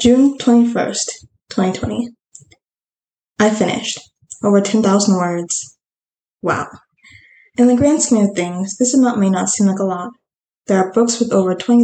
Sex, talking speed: female, 160 wpm